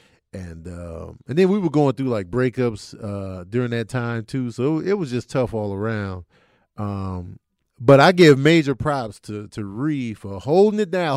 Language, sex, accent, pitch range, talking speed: English, male, American, 105-145 Hz, 195 wpm